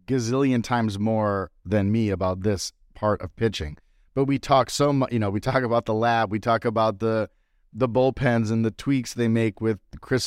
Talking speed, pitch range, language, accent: 205 wpm, 100-125 Hz, English, American